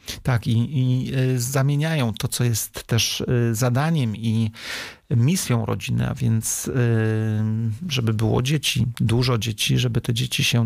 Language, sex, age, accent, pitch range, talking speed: Polish, male, 40-59, native, 110-125 Hz, 130 wpm